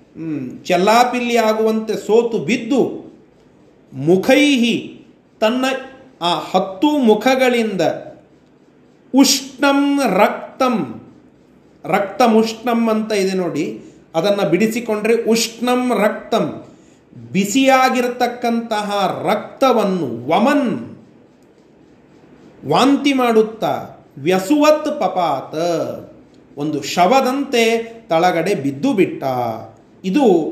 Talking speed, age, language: 65 wpm, 40-59, Kannada